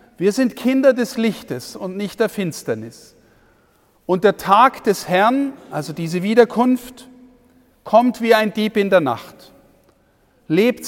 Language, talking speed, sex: German, 140 wpm, male